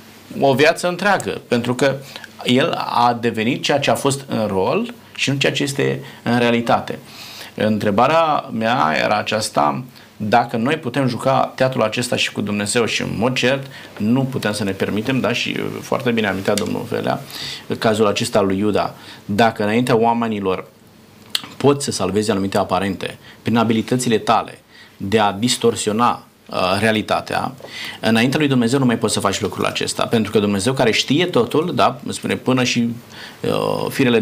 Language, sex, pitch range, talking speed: Romanian, male, 105-135 Hz, 160 wpm